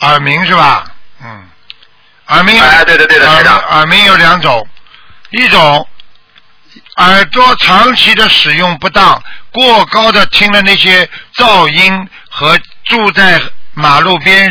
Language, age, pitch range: Chinese, 60-79, 160-200 Hz